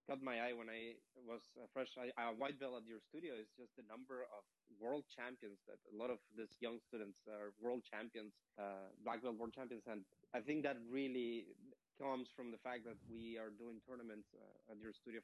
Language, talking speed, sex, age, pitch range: English, 215 wpm, male, 20-39, 115-145 Hz